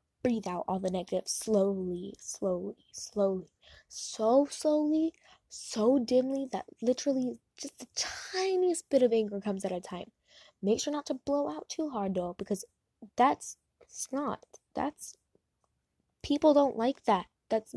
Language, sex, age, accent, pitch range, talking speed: English, female, 10-29, American, 215-295 Hz, 140 wpm